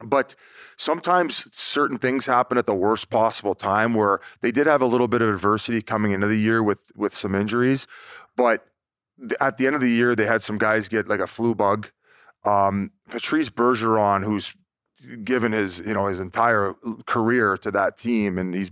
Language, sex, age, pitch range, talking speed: English, male, 30-49, 100-115 Hz, 190 wpm